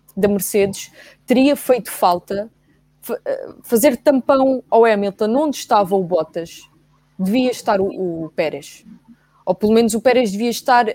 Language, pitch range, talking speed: English, 195-245 Hz, 135 wpm